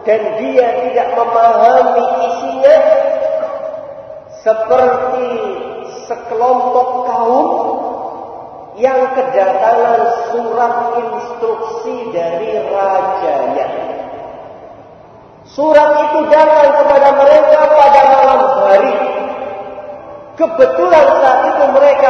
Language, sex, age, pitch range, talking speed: Malay, male, 40-59, 235-300 Hz, 70 wpm